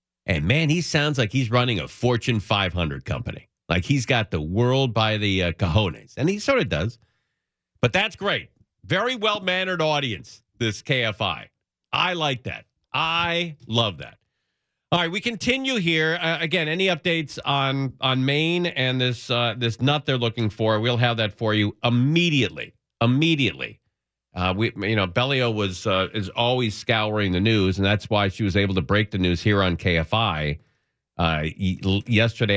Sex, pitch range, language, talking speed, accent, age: male, 95-135 Hz, English, 175 wpm, American, 40-59